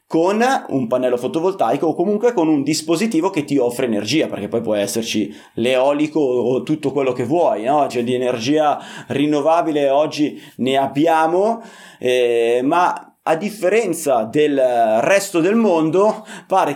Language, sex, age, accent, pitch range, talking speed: Italian, male, 30-49, native, 130-180 Hz, 145 wpm